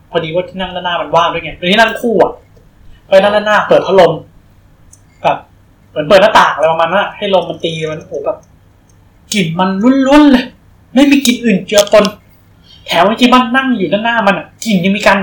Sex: male